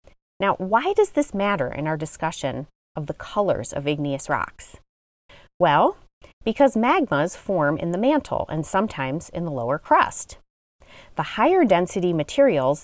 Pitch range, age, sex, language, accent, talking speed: 145-205 Hz, 30-49, female, English, American, 145 wpm